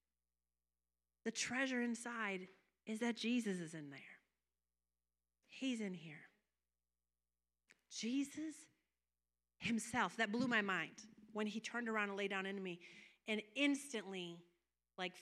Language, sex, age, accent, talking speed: English, female, 40-59, American, 120 wpm